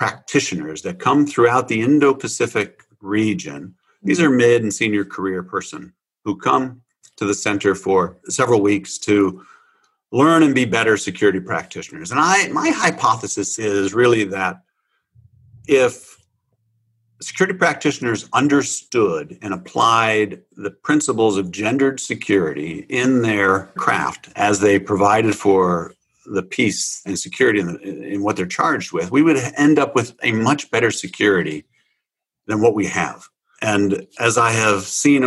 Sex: male